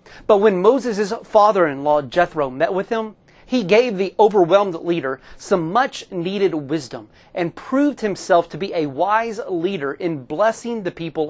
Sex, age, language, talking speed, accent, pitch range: male, 30-49, English, 150 wpm, American, 155-210 Hz